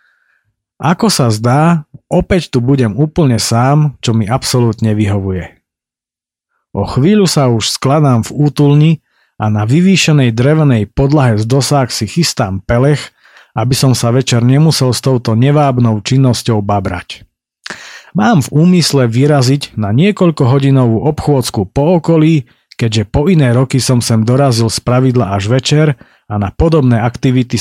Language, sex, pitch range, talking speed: Slovak, male, 115-145 Hz, 135 wpm